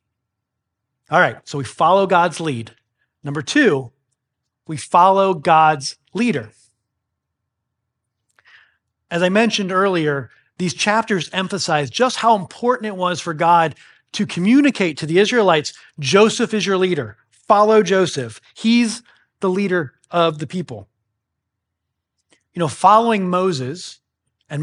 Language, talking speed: English, 120 wpm